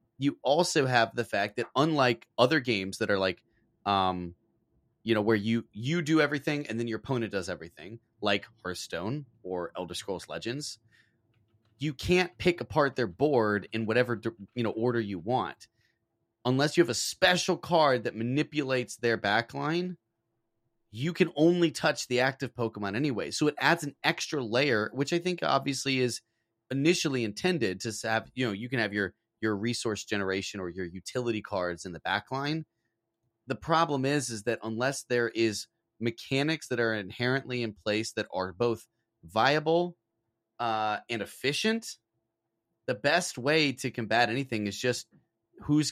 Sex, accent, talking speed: male, American, 165 wpm